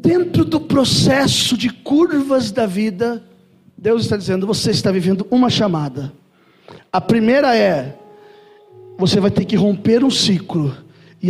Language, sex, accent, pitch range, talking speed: Portuguese, male, Brazilian, 165-235 Hz, 140 wpm